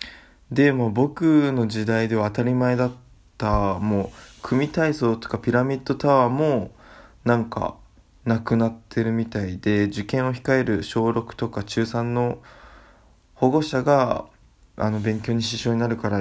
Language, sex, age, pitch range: Japanese, male, 20-39, 105-125 Hz